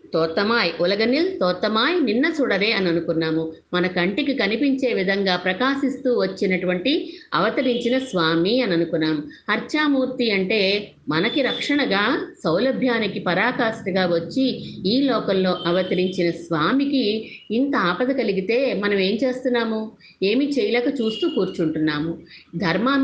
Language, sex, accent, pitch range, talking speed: Telugu, female, native, 185-265 Hz, 100 wpm